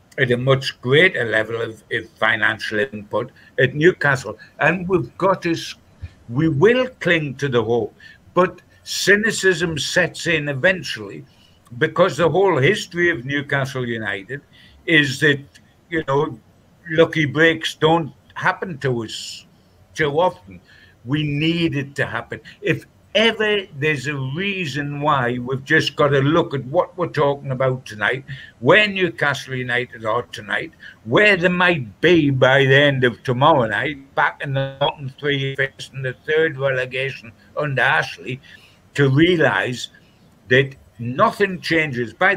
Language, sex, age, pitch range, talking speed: English, male, 60-79, 125-165 Hz, 135 wpm